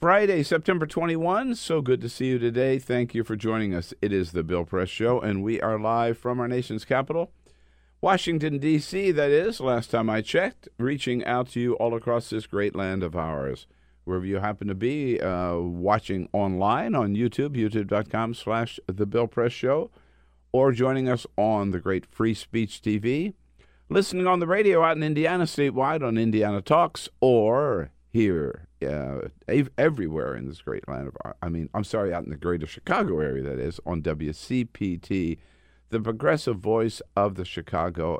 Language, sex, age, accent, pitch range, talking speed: English, male, 50-69, American, 90-130 Hz, 180 wpm